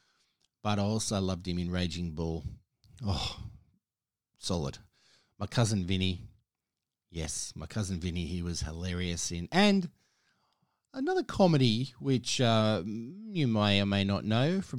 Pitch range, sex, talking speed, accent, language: 95-125 Hz, male, 135 wpm, Australian, English